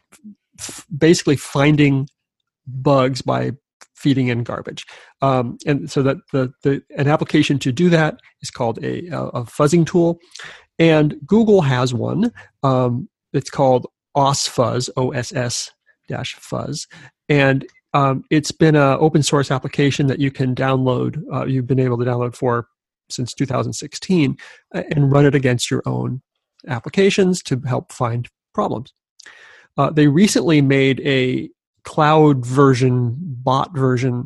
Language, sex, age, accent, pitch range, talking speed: English, male, 40-59, American, 125-155 Hz, 130 wpm